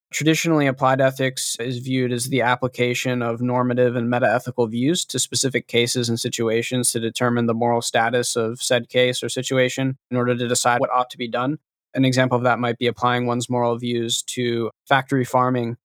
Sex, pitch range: male, 120-130 Hz